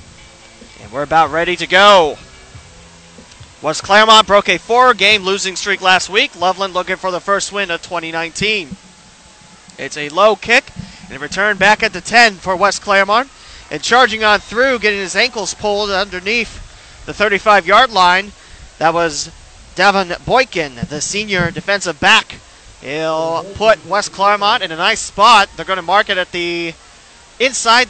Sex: male